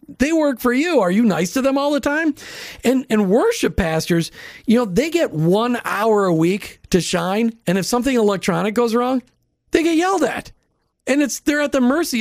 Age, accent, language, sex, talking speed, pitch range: 40-59, American, English, male, 205 wpm, 180-245 Hz